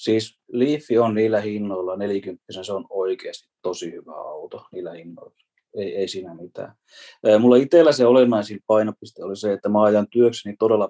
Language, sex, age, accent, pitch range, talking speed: Finnish, male, 30-49, native, 100-135 Hz, 165 wpm